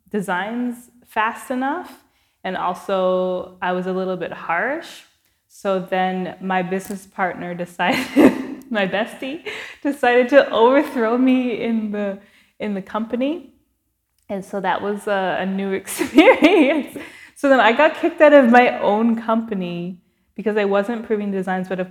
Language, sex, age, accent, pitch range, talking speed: English, female, 20-39, American, 180-245 Hz, 145 wpm